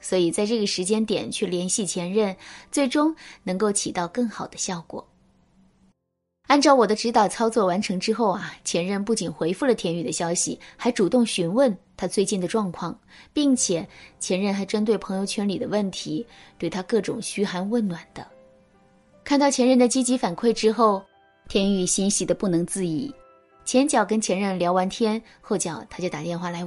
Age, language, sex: 20-39, Chinese, female